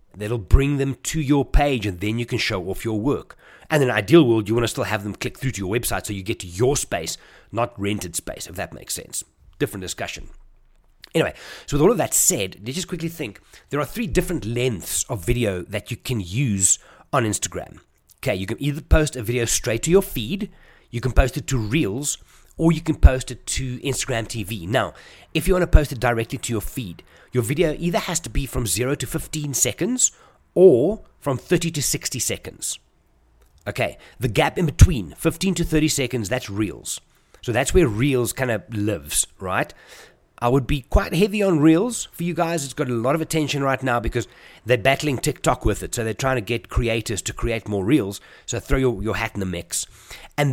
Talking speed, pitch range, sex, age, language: 215 wpm, 110-150 Hz, male, 30-49, English